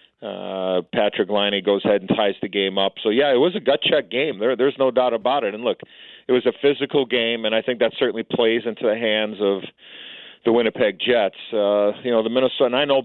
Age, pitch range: 40-59, 105-125 Hz